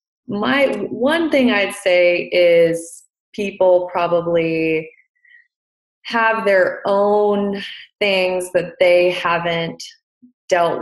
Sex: female